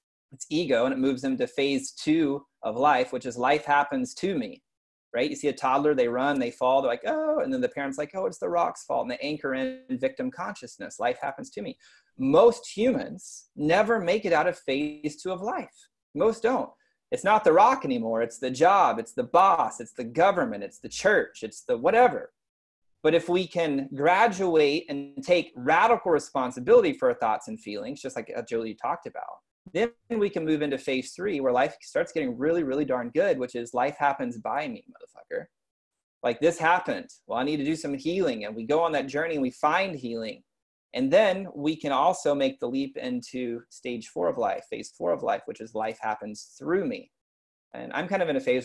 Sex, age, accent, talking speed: male, 30-49, American, 215 wpm